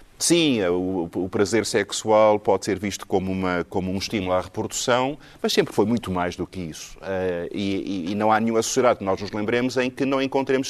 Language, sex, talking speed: Portuguese, male, 210 wpm